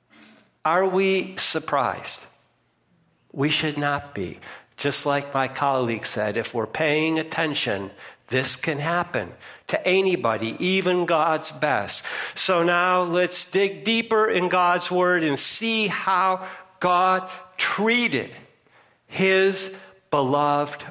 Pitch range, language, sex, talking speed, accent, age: 145-185 Hz, English, male, 110 wpm, American, 60-79